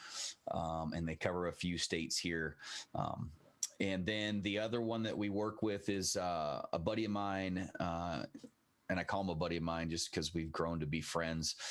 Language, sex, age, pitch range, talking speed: English, male, 30-49, 80-90 Hz, 205 wpm